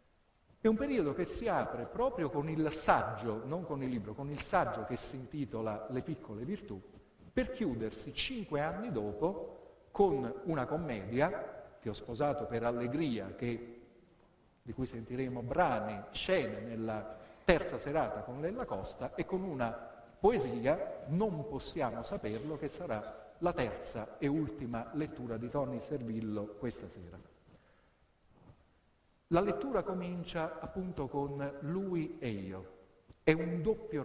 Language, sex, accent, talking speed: Italian, male, native, 135 wpm